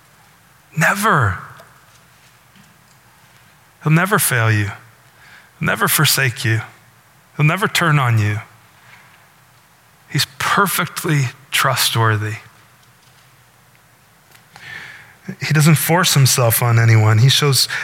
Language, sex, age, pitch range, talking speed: English, male, 20-39, 125-160 Hz, 85 wpm